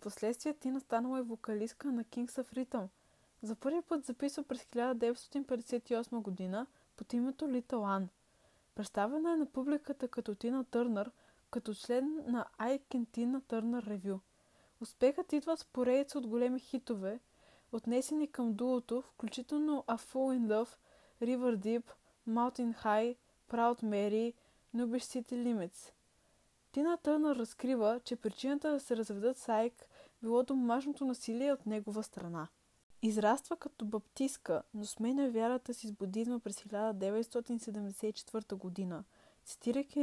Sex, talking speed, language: female, 130 wpm, Bulgarian